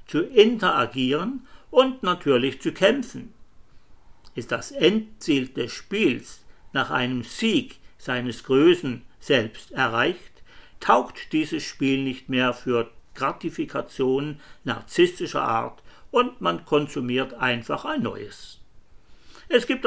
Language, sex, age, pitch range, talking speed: German, male, 60-79, 120-170 Hz, 105 wpm